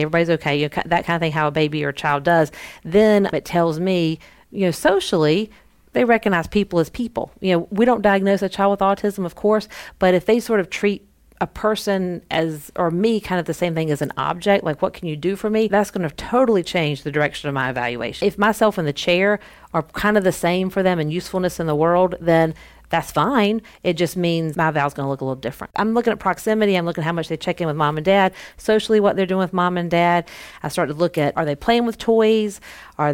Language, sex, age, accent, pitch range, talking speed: English, female, 40-59, American, 160-200 Hz, 255 wpm